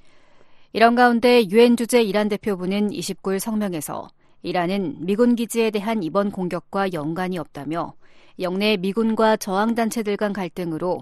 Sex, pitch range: female, 180-225 Hz